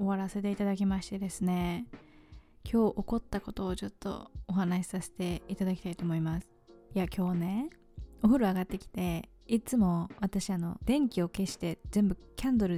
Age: 20-39